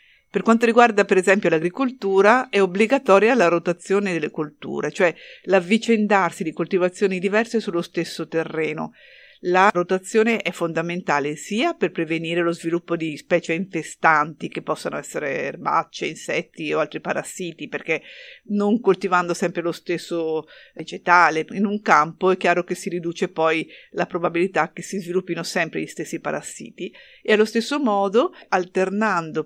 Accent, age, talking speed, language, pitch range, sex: native, 50-69, 145 wpm, Italian, 170-200 Hz, female